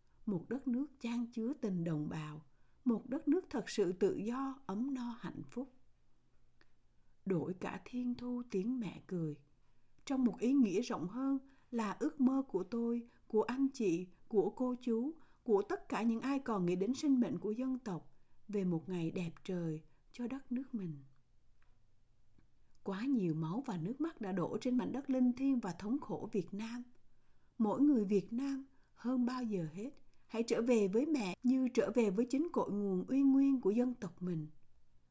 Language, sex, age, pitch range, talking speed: Vietnamese, female, 60-79, 185-255 Hz, 185 wpm